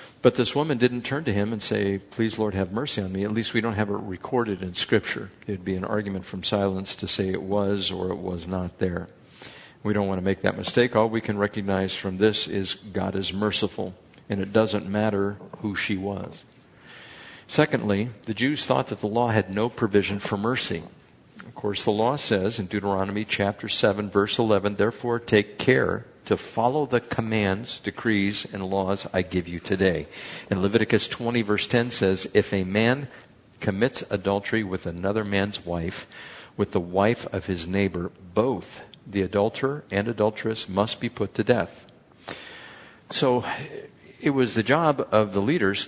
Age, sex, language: 50-69, male, English